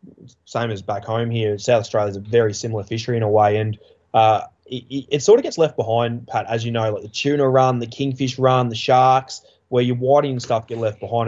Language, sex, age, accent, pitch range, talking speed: English, male, 20-39, Australian, 110-135 Hz, 240 wpm